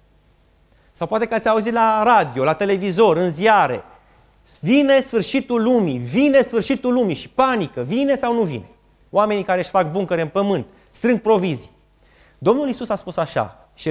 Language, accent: Romanian, native